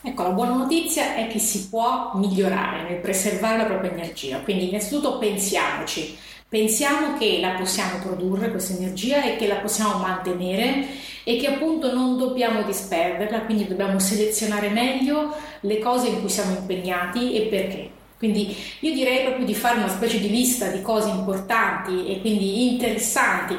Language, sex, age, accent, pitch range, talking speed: Italian, female, 30-49, native, 195-245 Hz, 160 wpm